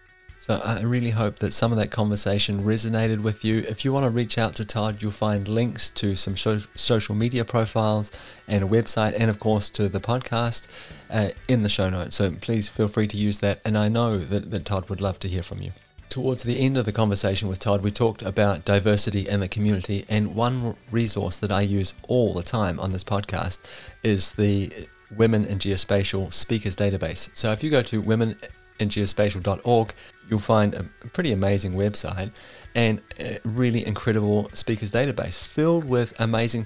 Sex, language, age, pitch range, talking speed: male, English, 30-49, 100-115 Hz, 190 wpm